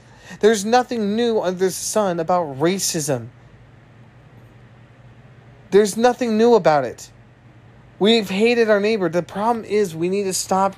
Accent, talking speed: American, 135 wpm